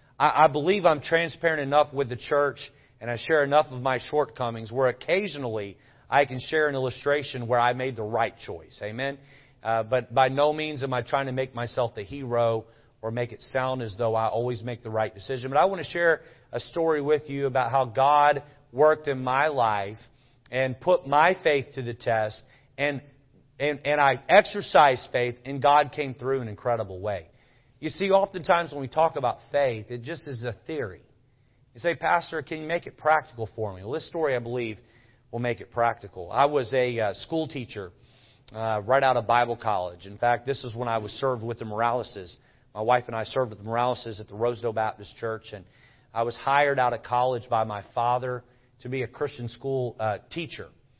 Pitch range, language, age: 120-145 Hz, English, 40-59